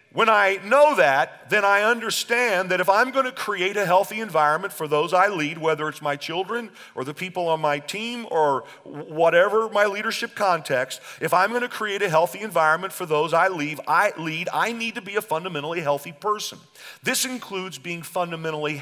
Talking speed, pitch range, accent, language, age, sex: 190 wpm, 160-210 Hz, American, English, 40-59, male